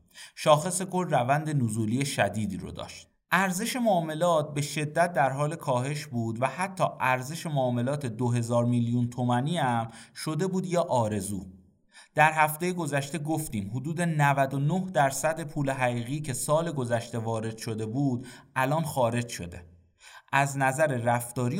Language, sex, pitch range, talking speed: Persian, male, 115-150 Hz, 135 wpm